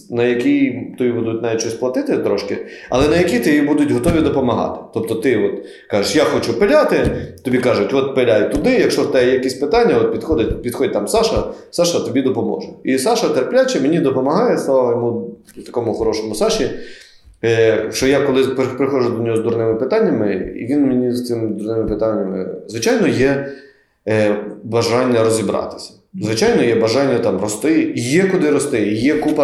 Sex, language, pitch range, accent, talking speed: male, Ukrainian, 115-145 Hz, native, 165 wpm